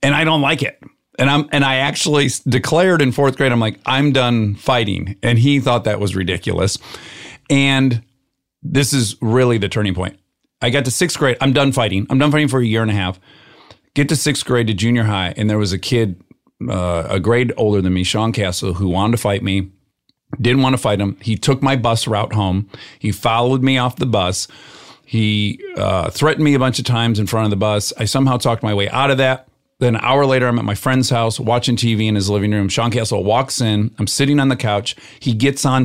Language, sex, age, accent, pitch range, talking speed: English, male, 40-59, American, 105-135 Hz, 235 wpm